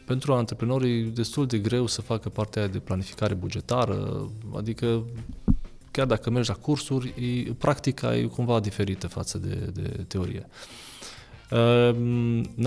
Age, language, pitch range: 20-39, Romanian, 110-140 Hz